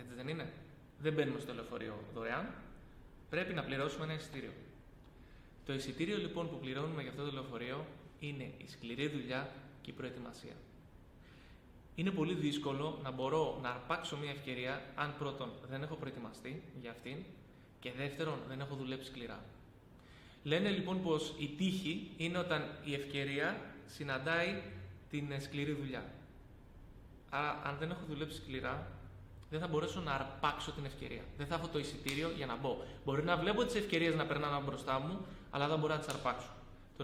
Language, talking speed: Greek, 160 wpm